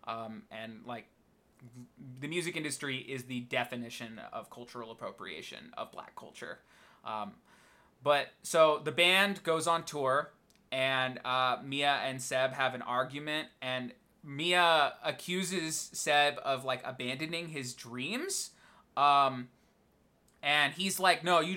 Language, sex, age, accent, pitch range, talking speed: English, male, 20-39, American, 125-155 Hz, 130 wpm